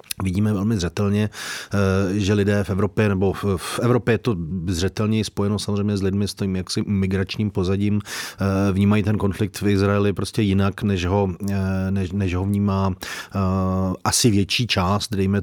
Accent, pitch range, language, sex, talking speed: native, 95-105 Hz, Czech, male, 150 wpm